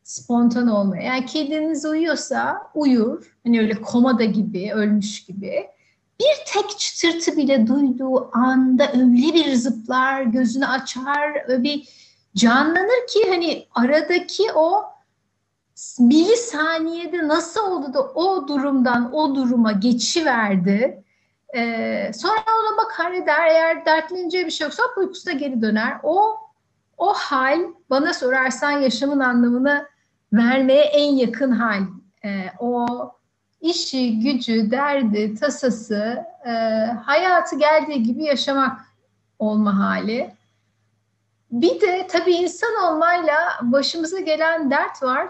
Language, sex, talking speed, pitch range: Turkish, female, 115 wpm, 235-315 Hz